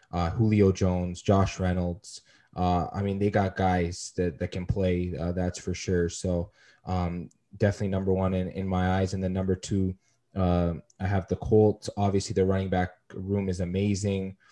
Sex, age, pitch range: male, 20-39, 90-100 Hz